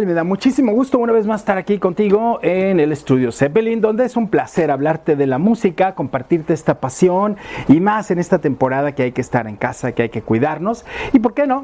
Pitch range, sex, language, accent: 130-195 Hz, male, Spanish, Mexican